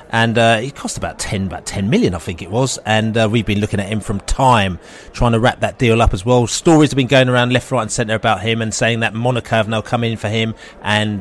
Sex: male